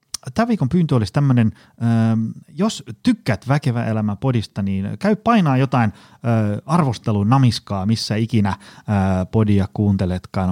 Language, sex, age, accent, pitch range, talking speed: Finnish, male, 30-49, native, 100-140 Hz, 115 wpm